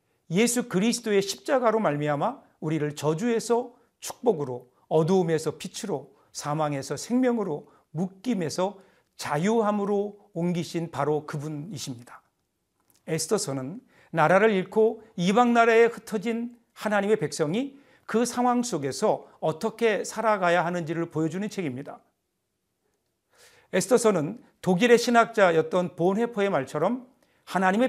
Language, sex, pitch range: Korean, male, 165-230 Hz